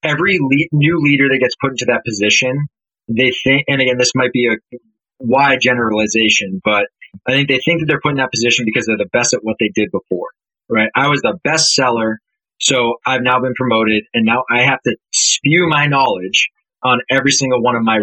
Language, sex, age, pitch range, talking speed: English, male, 20-39, 110-135 Hz, 215 wpm